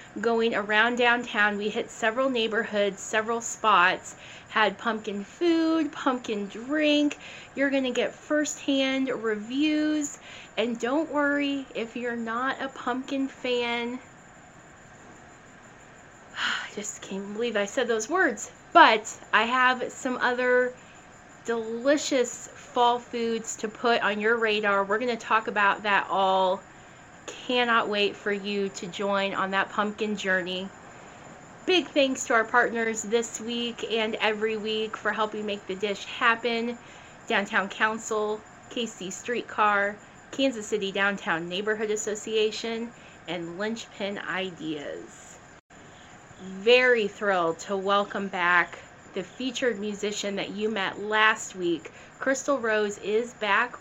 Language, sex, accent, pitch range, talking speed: English, female, American, 205-245 Hz, 125 wpm